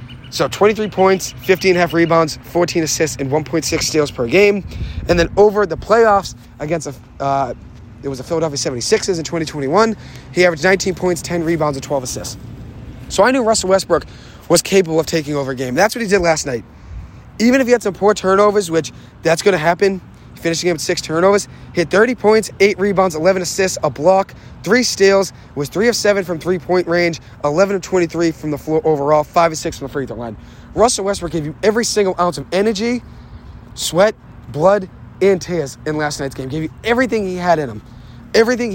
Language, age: English, 30-49